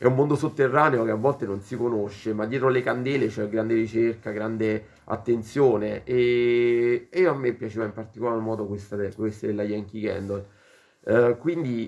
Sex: male